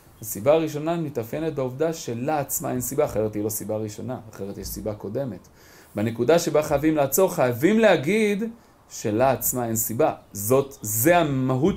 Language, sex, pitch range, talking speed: Hebrew, male, 110-145 Hz, 145 wpm